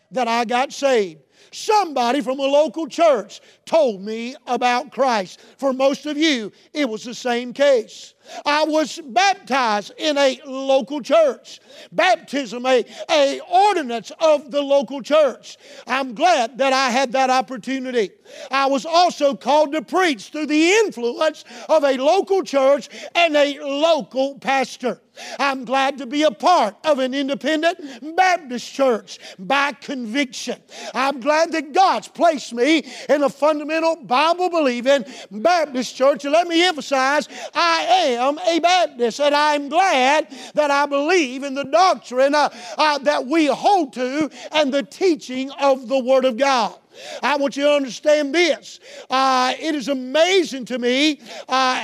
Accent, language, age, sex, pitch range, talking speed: American, English, 50-69, male, 260-320 Hz, 150 wpm